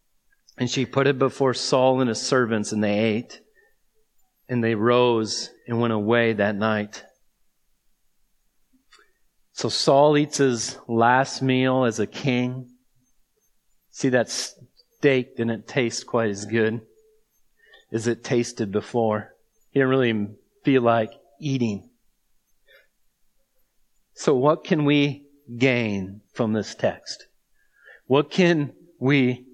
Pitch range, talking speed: 115-145 Hz, 120 wpm